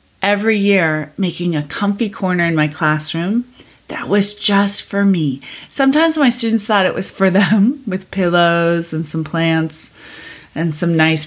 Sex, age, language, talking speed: female, 30-49, English, 160 wpm